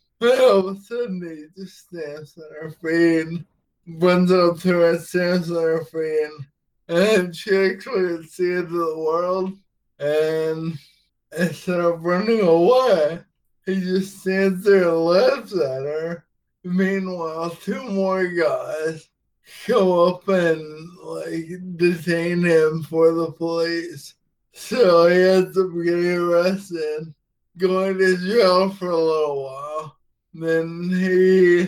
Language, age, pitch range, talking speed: English, 20-39, 160-185 Hz, 135 wpm